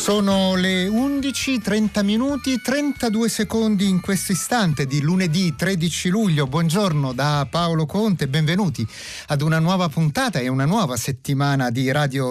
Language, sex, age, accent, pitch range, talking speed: Italian, male, 30-49, native, 130-195 Hz, 135 wpm